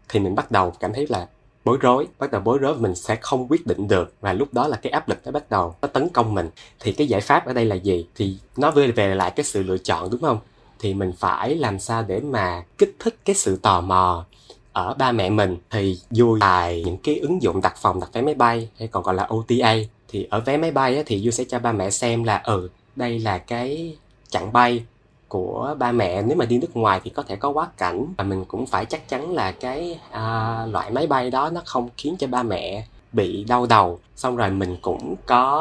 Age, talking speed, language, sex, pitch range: 20-39, 250 wpm, Vietnamese, male, 100-125 Hz